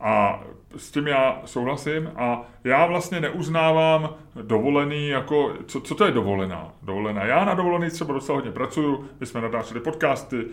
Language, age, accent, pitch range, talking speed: Czech, 30-49, native, 120-165 Hz, 160 wpm